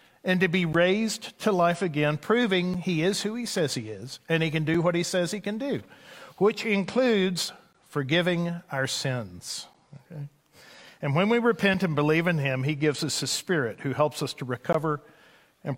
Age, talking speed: 50-69, 185 wpm